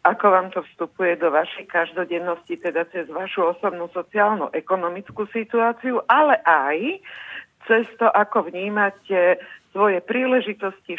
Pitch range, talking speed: 170-205 Hz, 115 wpm